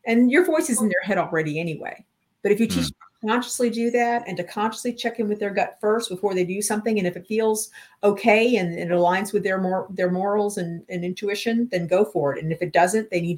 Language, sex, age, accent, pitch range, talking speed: English, female, 50-69, American, 175-215 Hz, 260 wpm